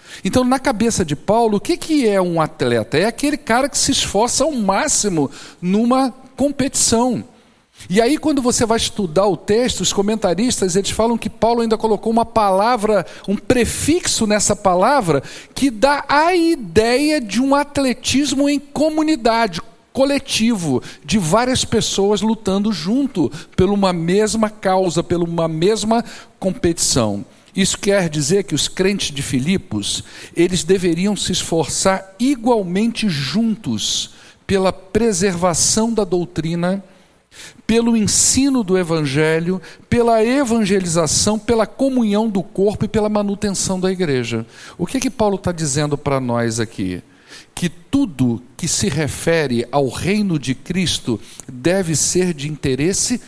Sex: male